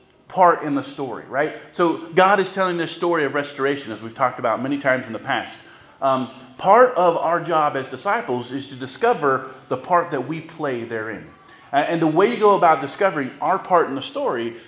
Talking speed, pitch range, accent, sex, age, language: 210 wpm, 130-170 Hz, American, male, 30-49, English